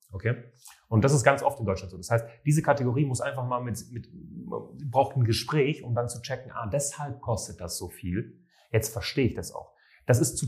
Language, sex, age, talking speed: German, male, 30-49, 225 wpm